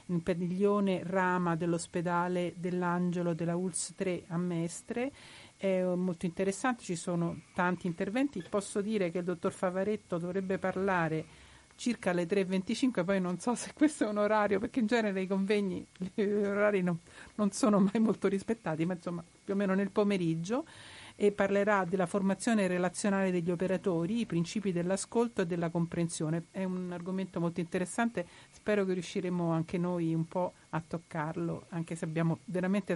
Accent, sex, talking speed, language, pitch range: native, female, 160 wpm, Italian, 165-195 Hz